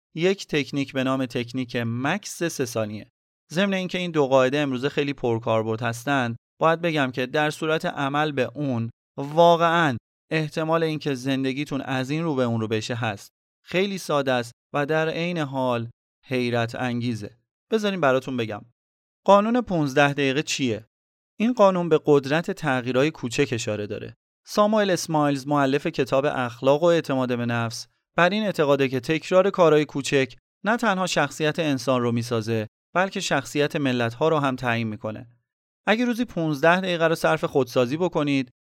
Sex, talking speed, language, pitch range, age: male, 155 wpm, Persian, 125-165 Hz, 30-49